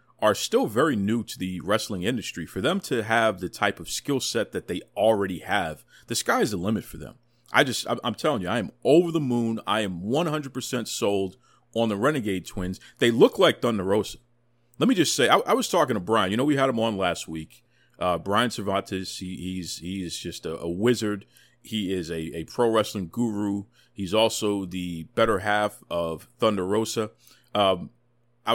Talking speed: 205 wpm